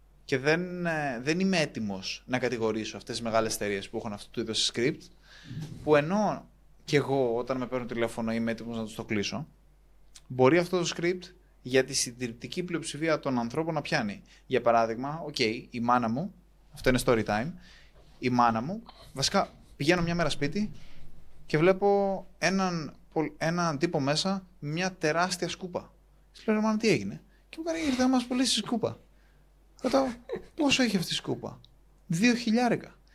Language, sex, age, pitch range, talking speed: Greek, male, 20-39, 130-205 Hz, 160 wpm